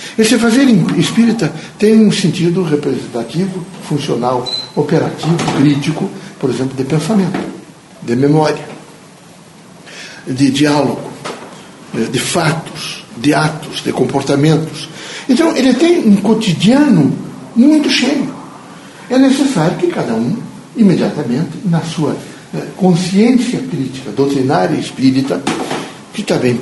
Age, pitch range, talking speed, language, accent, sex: 60-79, 145-210 Hz, 105 wpm, Portuguese, Brazilian, male